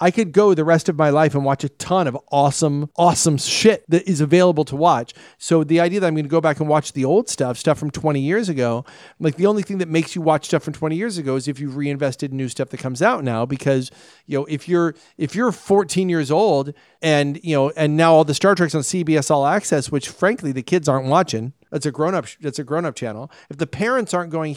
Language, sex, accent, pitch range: English, male, American, 135-170 Hz